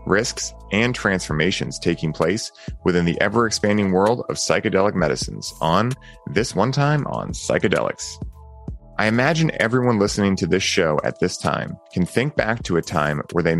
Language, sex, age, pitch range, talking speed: English, male, 30-49, 85-105 Hz, 160 wpm